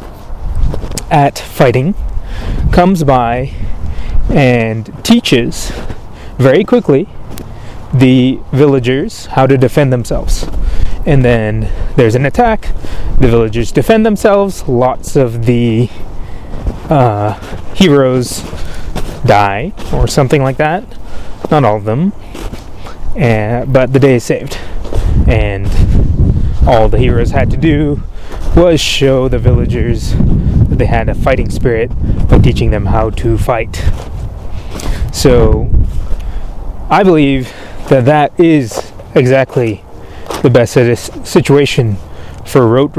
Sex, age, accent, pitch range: male, 20-39, American, 95-140 Hz